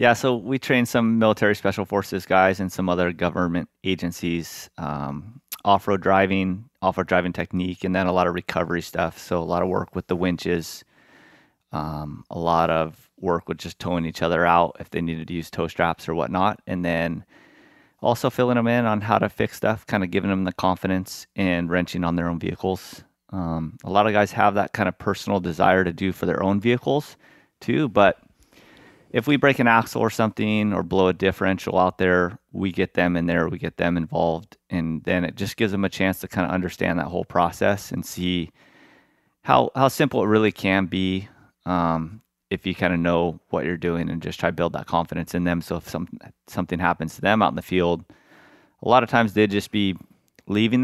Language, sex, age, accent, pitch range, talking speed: English, male, 30-49, American, 85-100 Hz, 210 wpm